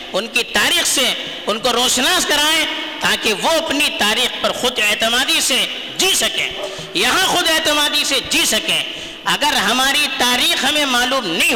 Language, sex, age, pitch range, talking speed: Urdu, female, 50-69, 215-310 Hz, 155 wpm